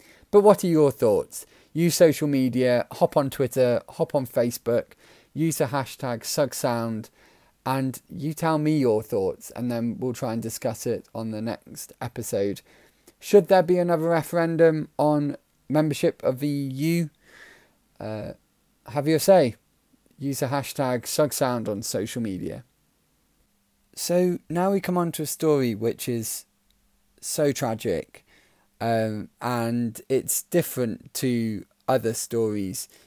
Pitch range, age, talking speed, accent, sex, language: 110-150 Hz, 20-39, 135 wpm, British, male, English